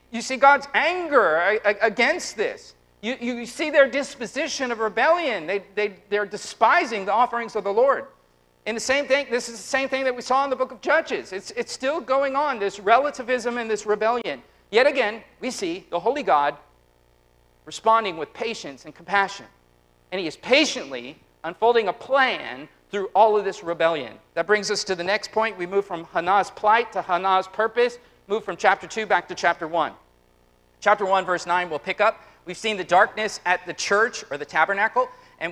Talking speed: 195 wpm